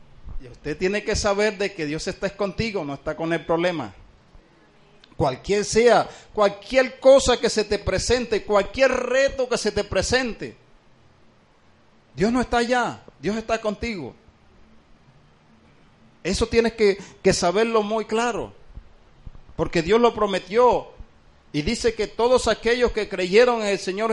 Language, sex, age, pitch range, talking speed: Spanish, male, 50-69, 150-215 Hz, 140 wpm